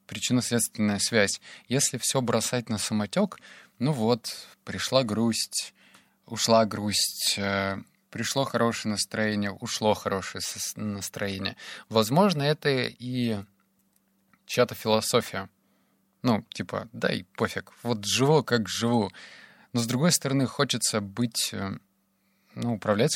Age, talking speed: 20-39, 105 wpm